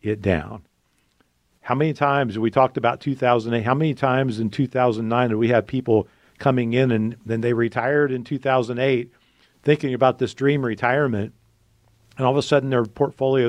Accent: American